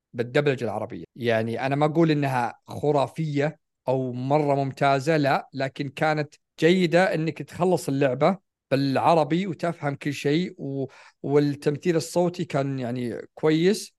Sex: male